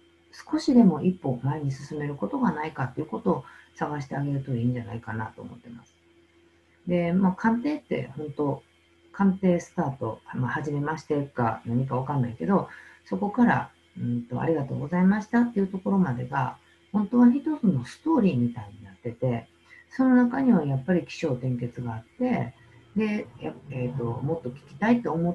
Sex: female